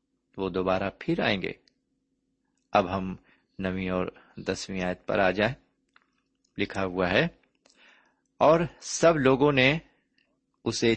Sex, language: male, Urdu